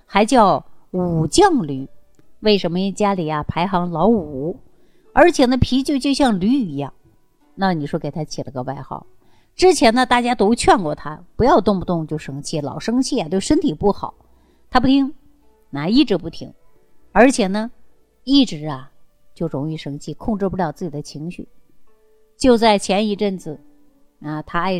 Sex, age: female, 50-69